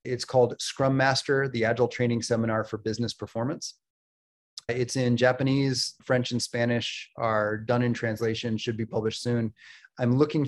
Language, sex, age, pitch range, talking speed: English, male, 30-49, 115-130 Hz, 155 wpm